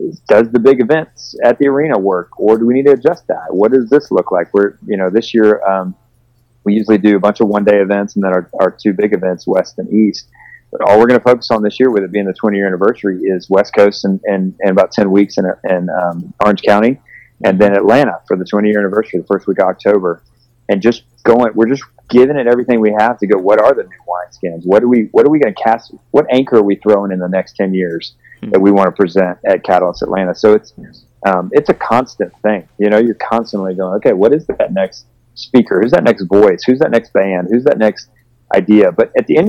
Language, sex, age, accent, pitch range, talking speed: English, male, 30-49, American, 100-120 Hz, 255 wpm